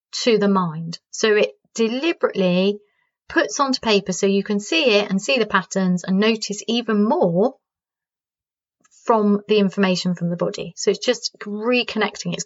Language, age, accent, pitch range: English, 30-49, British, 195-235 Hz